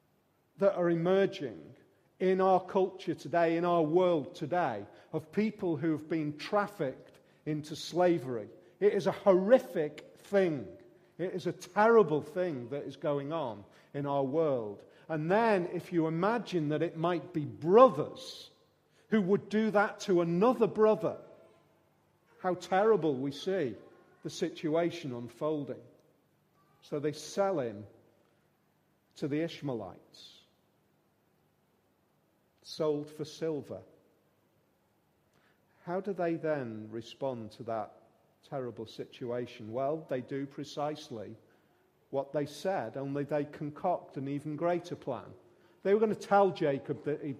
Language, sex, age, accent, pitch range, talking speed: English, male, 40-59, British, 140-175 Hz, 130 wpm